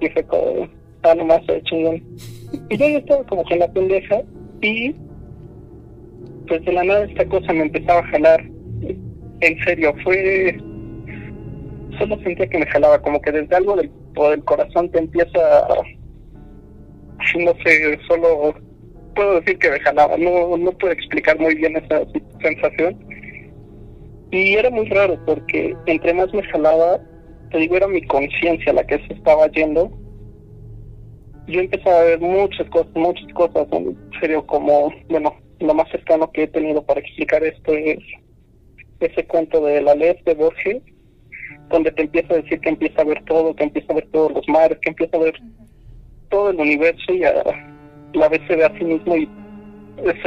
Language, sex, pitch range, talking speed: Spanish, male, 150-180 Hz, 170 wpm